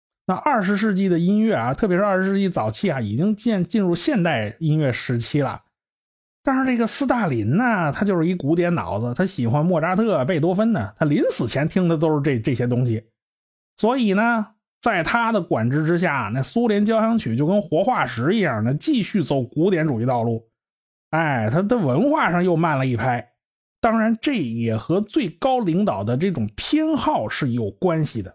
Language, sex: Chinese, male